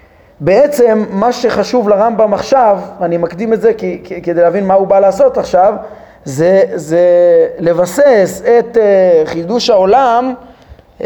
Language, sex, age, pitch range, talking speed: Hebrew, male, 30-49, 170-240 Hz, 135 wpm